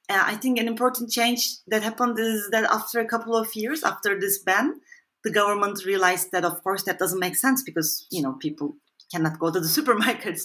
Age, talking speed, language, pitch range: 30-49, 205 wpm, English, 165-230 Hz